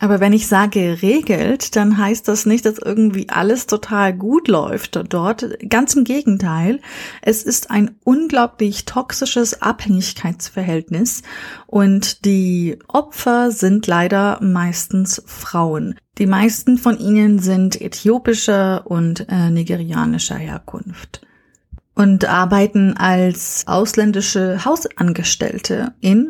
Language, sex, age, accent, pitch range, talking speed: German, female, 30-49, German, 190-225 Hz, 110 wpm